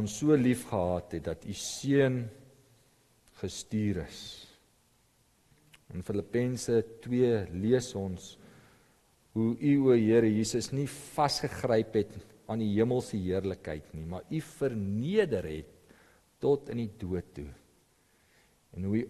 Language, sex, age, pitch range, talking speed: English, male, 50-69, 90-135 Hz, 120 wpm